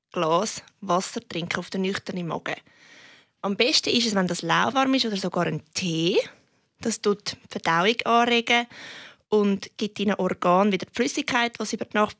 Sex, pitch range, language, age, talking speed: female, 195-235 Hz, German, 20-39, 180 wpm